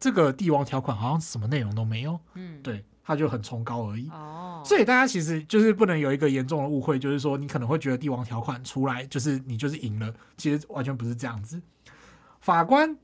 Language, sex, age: Chinese, male, 20-39